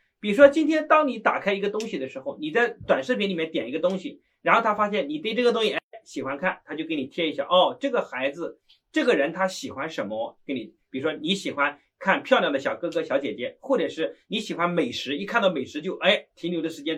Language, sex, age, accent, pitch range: Chinese, male, 30-49, native, 185-275 Hz